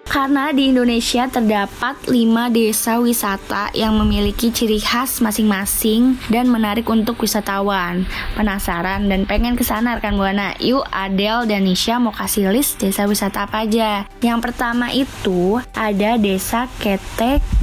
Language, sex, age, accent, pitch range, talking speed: Indonesian, female, 20-39, native, 205-235 Hz, 135 wpm